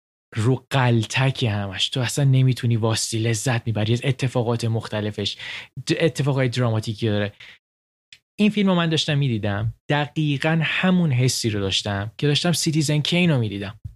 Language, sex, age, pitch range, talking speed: Persian, male, 20-39, 110-135 Hz, 130 wpm